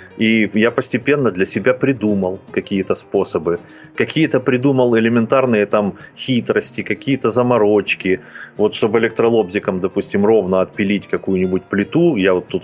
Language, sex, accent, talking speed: Russian, male, native, 125 wpm